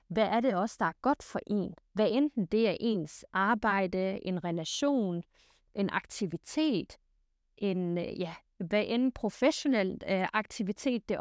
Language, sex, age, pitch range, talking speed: Danish, female, 30-49, 190-240 Hz, 130 wpm